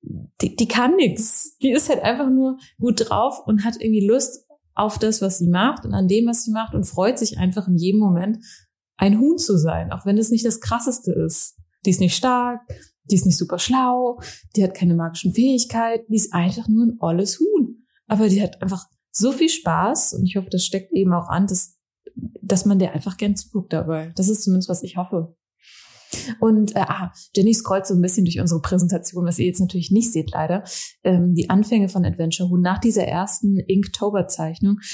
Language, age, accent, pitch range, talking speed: German, 20-39, German, 180-220 Hz, 210 wpm